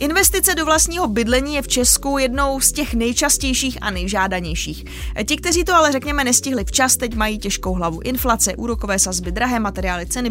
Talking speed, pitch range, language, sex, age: 175 wpm, 215-270 Hz, Czech, female, 20-39